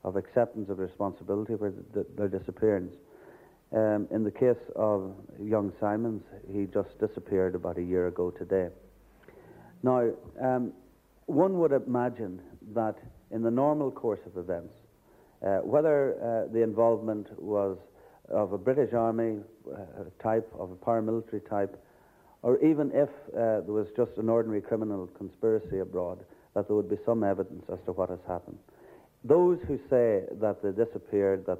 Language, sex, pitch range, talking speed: English, male, 95-120 Hz, 150 wpm